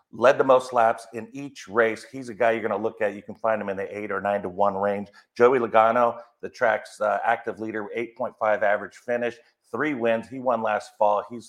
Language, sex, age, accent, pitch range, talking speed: English, male, 50-69, American, 100-115 Hz, 230 wpm